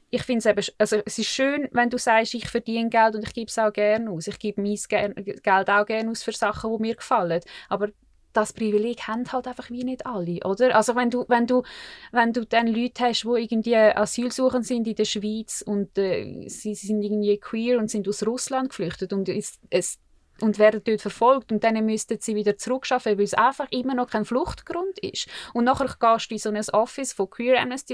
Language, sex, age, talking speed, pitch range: German, female, 20-39, 230 wpm, 205-245 Hz